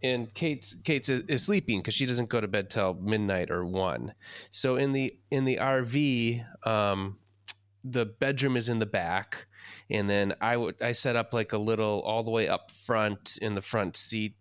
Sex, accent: male, American